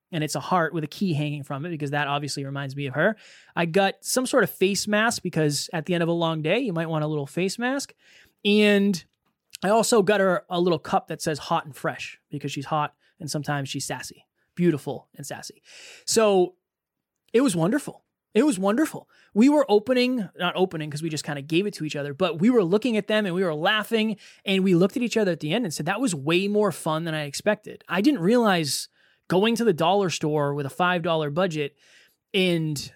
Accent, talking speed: American, 230 wpm